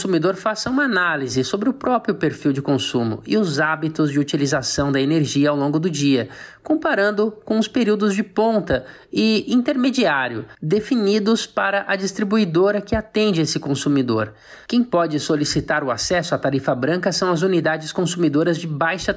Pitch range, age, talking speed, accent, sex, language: 150-200 Hz, 20-39, 165 wpm, Brazilian, male, Portuguese